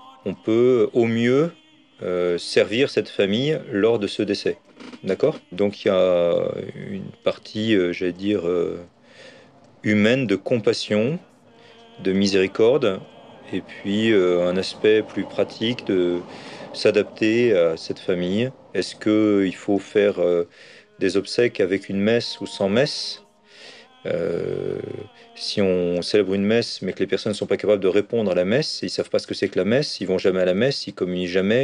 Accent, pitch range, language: French, 95-155 Hz, French